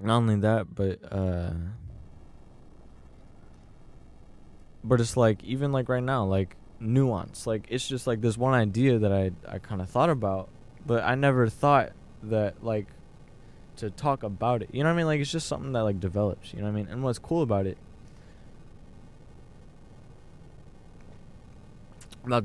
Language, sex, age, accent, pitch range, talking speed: English, male, 20-39, American, 95-120 Hz, 165 wpm